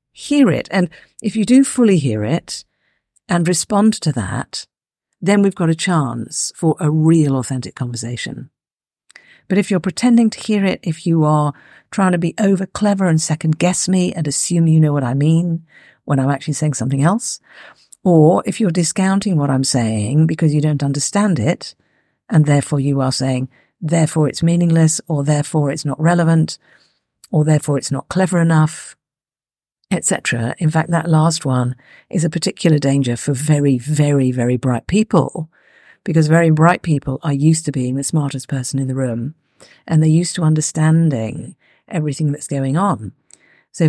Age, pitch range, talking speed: 50-69, 140-170 Hz, 170 wpm